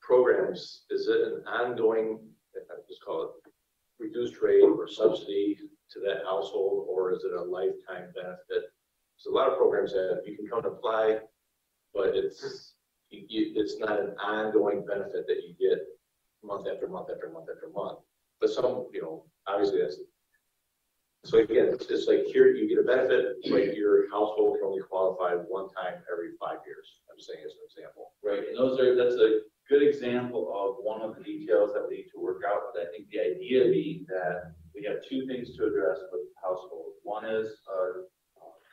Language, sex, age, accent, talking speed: English, male, 40-59, American, 185 wpm